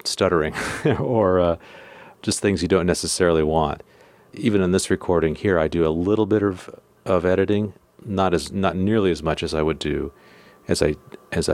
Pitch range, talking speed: 80-100 Hz, 180 wpm